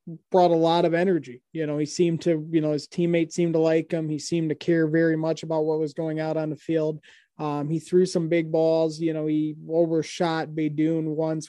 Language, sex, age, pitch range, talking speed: English, male, 20-39, 155-170 Hz, 230 wpm